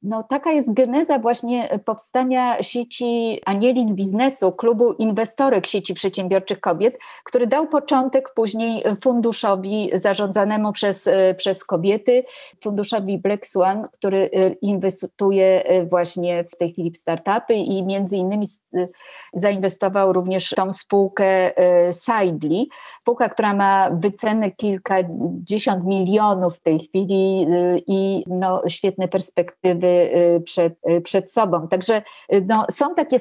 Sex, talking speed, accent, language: female, 110 wpm, native, Polish